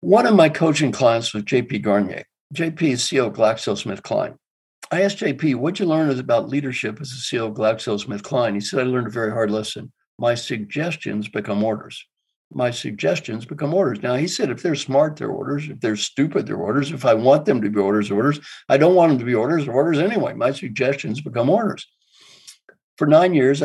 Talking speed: 205 wpm